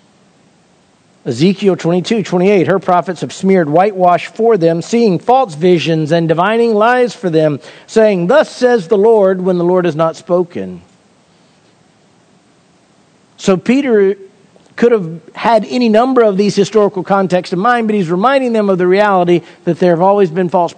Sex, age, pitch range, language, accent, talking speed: male, 50-69, 165-205 Hz, English, American, 165 wpm